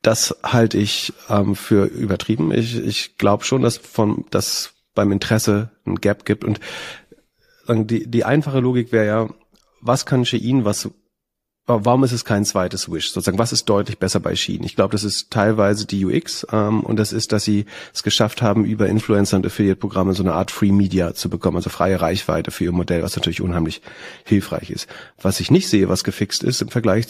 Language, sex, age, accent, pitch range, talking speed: German, male, 30-49, German, 95-115 Hz, 195 wpm